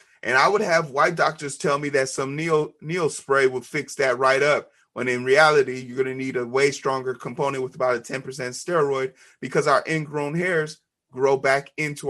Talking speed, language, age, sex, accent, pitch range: 205 wpm, English, 30-49, male, American, 125-155 Hz